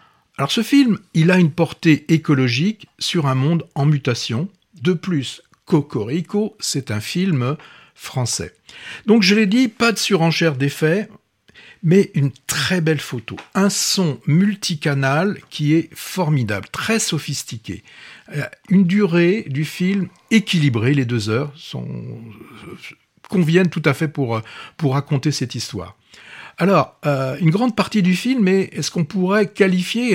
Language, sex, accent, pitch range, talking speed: French, male, French, 140-195 Hz, 140 wpm